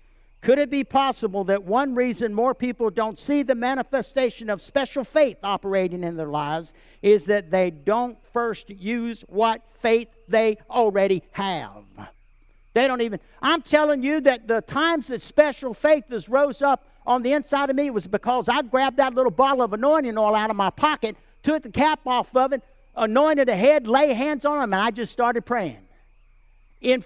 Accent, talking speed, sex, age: American, 185 wpm, male, 50-69